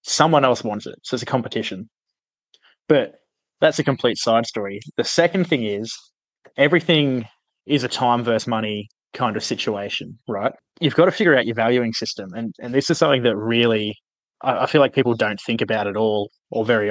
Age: 20-39